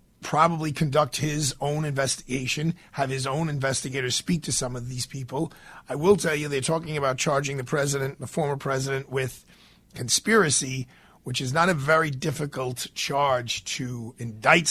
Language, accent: English, American